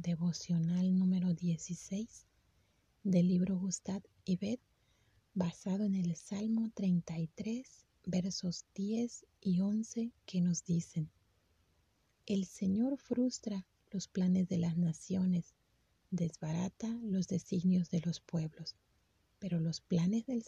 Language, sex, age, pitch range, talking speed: Spanish, female, 30-49, 165-210 Hz, 110 wpm